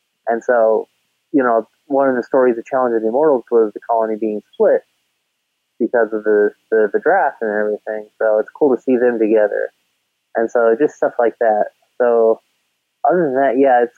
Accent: American